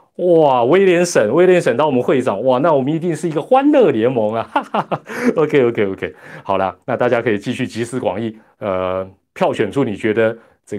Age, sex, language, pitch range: 30-49, male, Chinese, 100-145 Hz